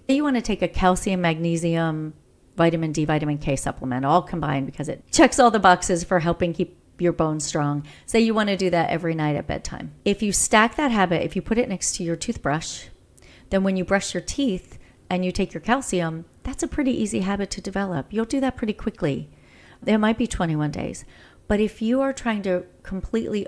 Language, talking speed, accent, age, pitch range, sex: English, 210 wpm, American, 40-59, 165-210 Hz, female